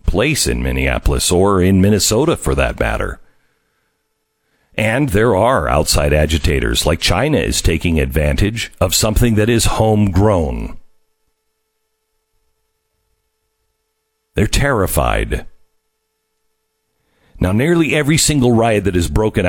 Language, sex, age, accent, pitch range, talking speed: English, male, 50-69, American, 90-150 Hz, 105 wpm